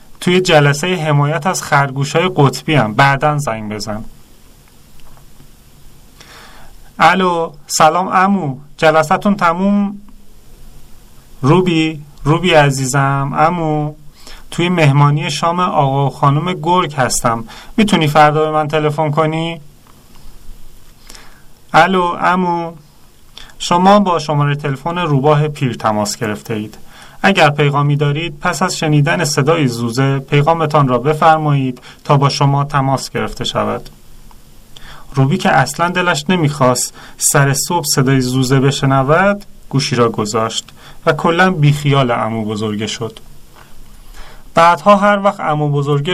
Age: 30-49